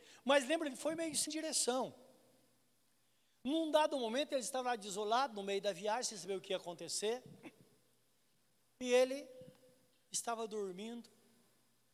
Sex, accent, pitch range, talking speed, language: male, Brazilian, 155-215 Hz, 135 wpm, Portuguese